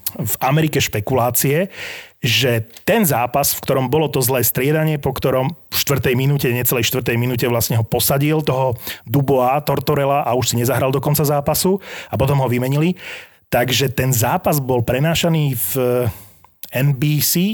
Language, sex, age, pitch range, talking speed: Slovak, male, 30-49, 125-160 Hz, 150 wpm